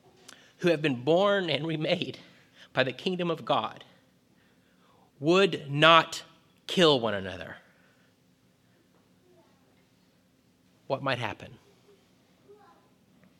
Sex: male